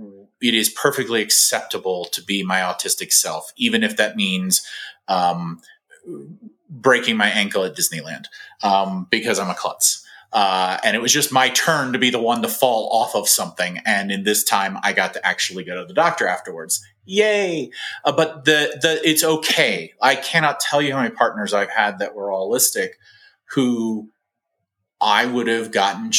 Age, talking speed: 30-49, 175 wpm